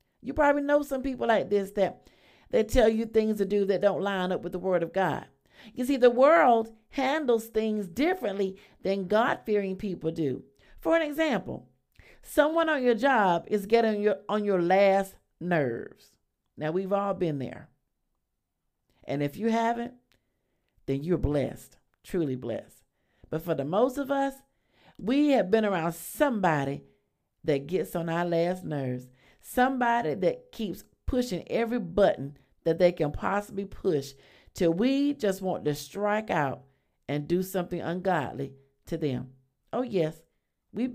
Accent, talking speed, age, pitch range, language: American, 155 wpm, 50-69, 170-235 Hz, English